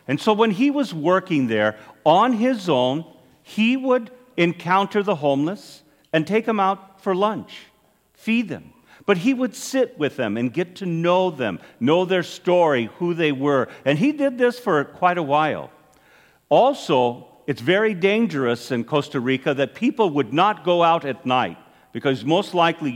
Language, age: English, 50-69